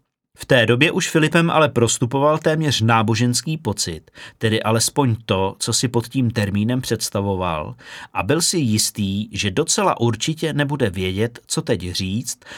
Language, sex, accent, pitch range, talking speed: Czech, male, native, 110-145 Hz, 150 wpm